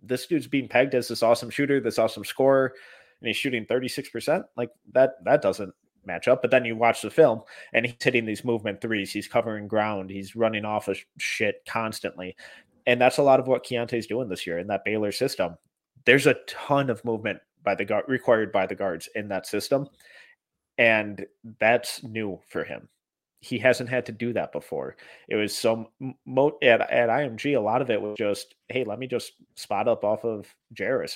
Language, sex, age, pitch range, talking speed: English, male, 30-49, 105-130 Hz, 205 wpm